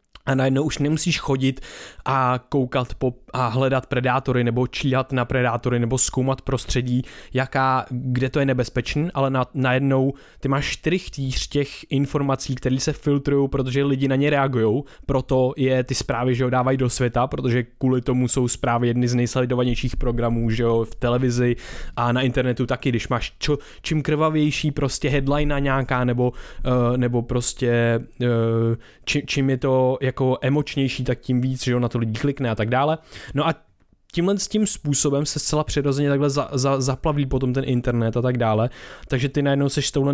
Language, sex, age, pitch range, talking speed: Czech, male, 20-39, 125-140 Hz, 180 wpm